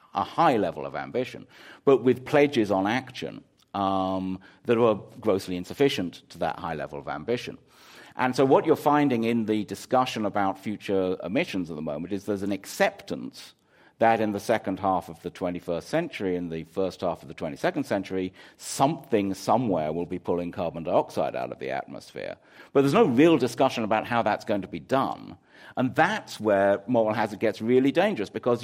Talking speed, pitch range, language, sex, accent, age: 185 wpm, 95-125 Hz, English, male, British, 50-69